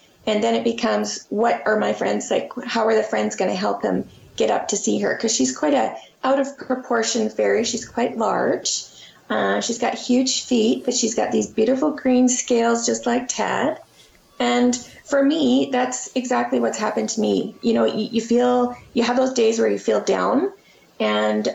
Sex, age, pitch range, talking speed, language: female, 30-49, 210-250 Hz, 190 wpm, English